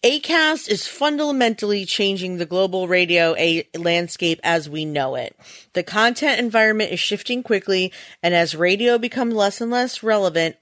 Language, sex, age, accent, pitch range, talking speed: English, female, 30-49, American, 175-235 Hz, 155 wpm